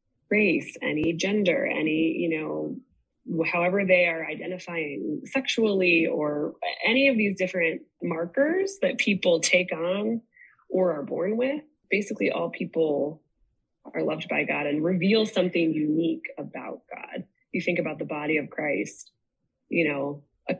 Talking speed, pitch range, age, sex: 140 wpm, 160-210 Hz, 20-39, female